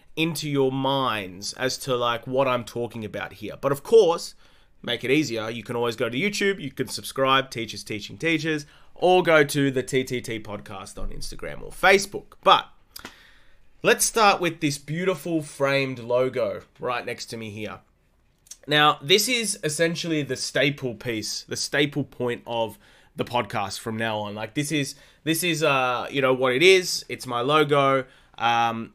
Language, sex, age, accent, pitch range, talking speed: English, male, 20-39, Australian, 120-150 Hz, 170 wpm